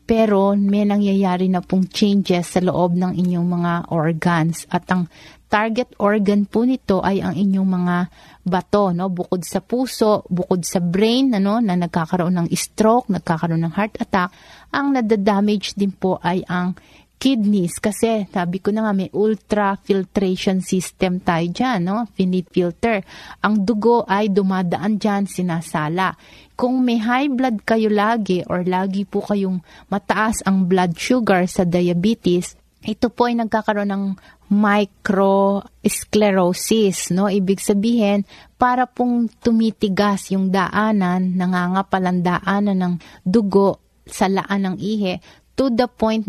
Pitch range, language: 180-215 Hz, Filipino